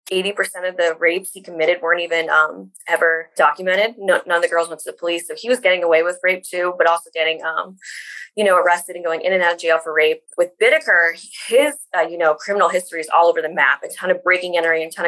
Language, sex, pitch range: English, female, 165-190 Hz